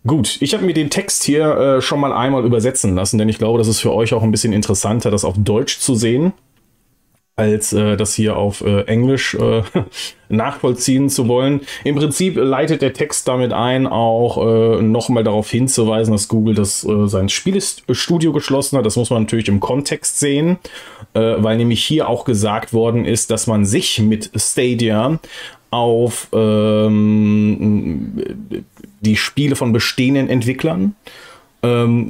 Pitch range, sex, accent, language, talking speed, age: 110-130 Hz, male, German, German, 165 wpm, 30-49